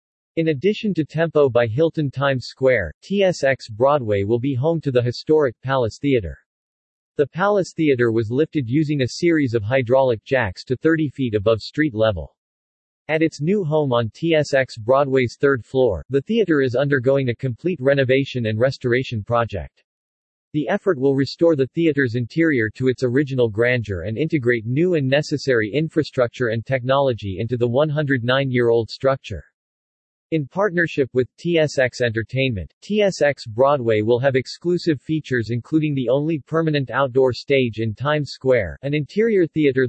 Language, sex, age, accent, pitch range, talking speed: English, male, 40-59, American, 120-150 Hz, 150 wpm